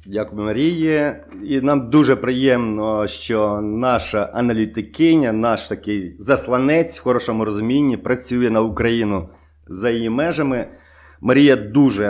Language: Ukrainian